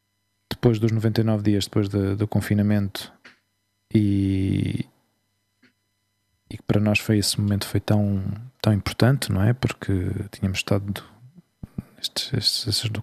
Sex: male